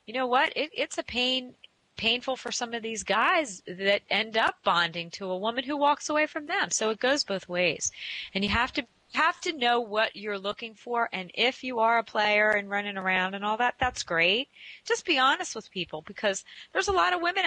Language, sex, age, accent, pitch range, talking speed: English, female, 30-49, American, 180-230 Hz, 225 wpm